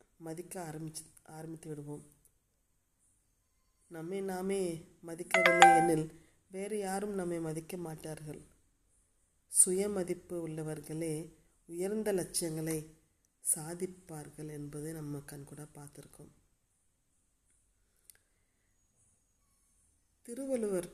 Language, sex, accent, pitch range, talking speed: Tamil, female, native, 135-180 Hz, 70 wpm